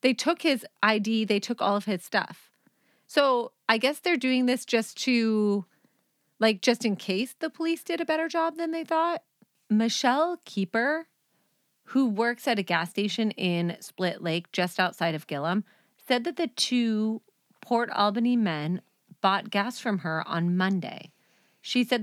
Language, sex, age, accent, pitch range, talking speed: English, female, 30-49, American, 175-230 Hz, 165 wpm